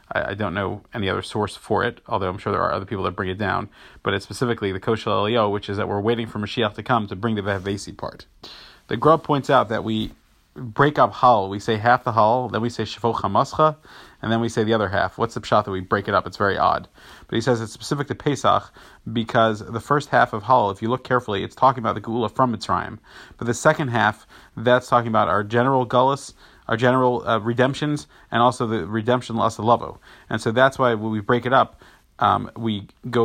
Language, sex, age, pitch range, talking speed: English, male, 30-49, 105-125 Hz, 240 wpm